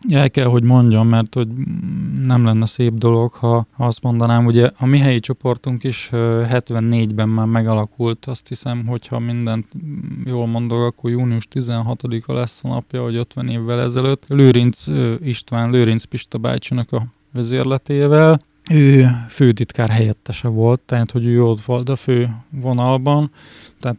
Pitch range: 115-130 Hz